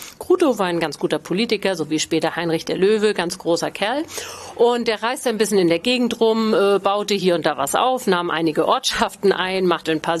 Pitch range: 175-225 Hz